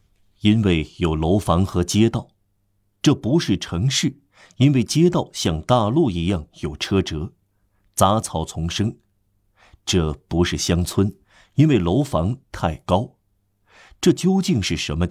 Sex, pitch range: male, 90-115 Hz